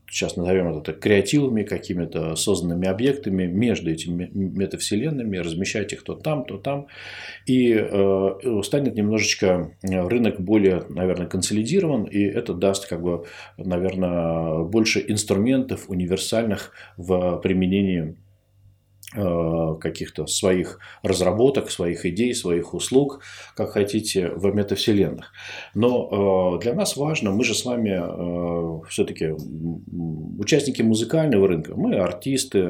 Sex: male